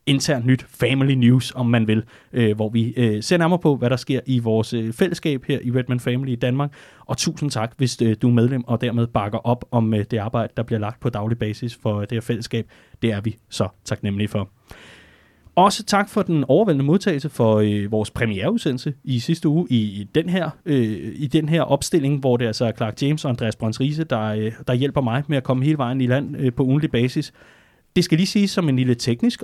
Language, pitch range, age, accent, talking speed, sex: Danish, 120-160 Hz, 30-49, native, 215 wpm, male